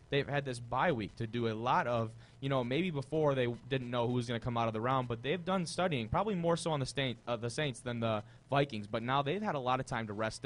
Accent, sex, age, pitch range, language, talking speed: American, male, 20-39, 115-145 Hz, English, 305 wpm